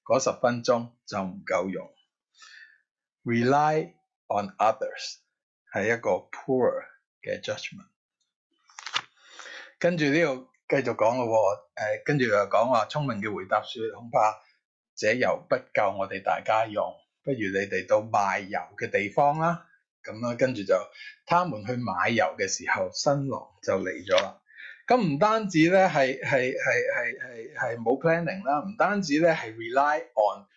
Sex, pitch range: male, 135-210 Hz